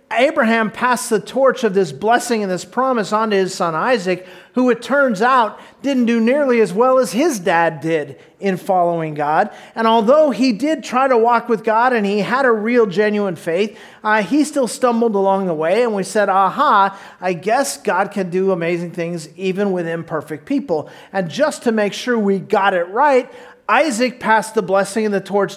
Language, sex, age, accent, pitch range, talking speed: English, male, 40-59, American, 190-245 Hz, 195 wpm